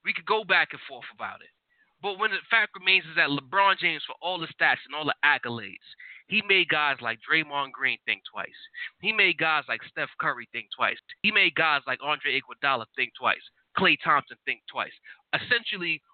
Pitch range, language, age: 180-230 Hz, English, 20-39